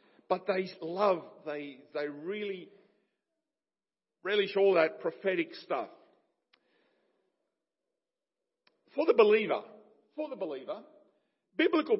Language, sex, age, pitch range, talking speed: English, male, 50-69, 170-285 Hz, 90 wpm